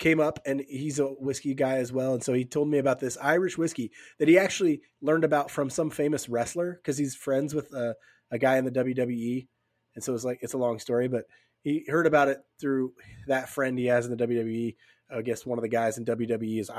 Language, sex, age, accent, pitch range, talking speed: English, male, 30-49, American, 120-155 Hz, 240 wpm